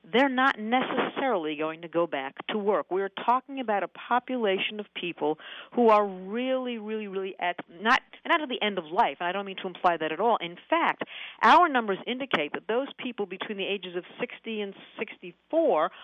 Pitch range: 180-255 Hz